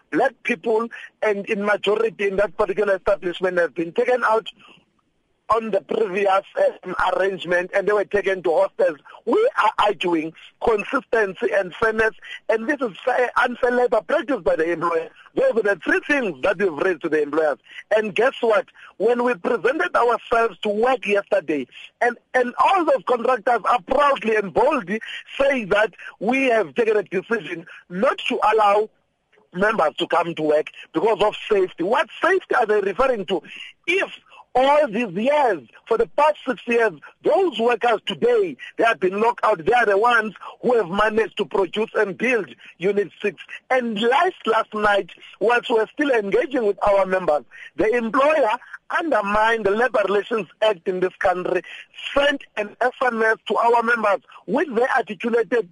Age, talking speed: 50-69, 165 wpm